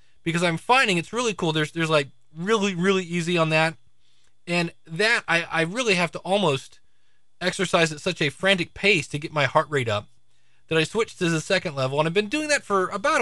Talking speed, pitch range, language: 220 wpm, 125-175 Hz, English